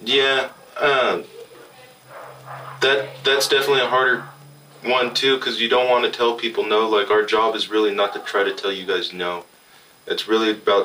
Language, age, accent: English, 20-39, American